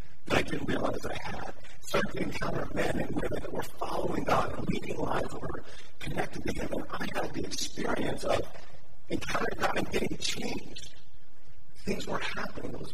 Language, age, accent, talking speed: English, 50-69, American, 180 wpm